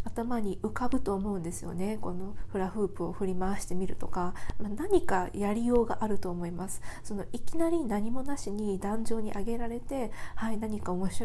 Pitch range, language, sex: 195-255 Hz, Japanese, female